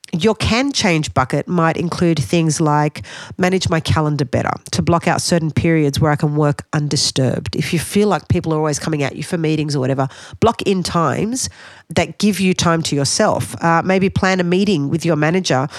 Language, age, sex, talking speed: English, 40-59, female, 200 wpm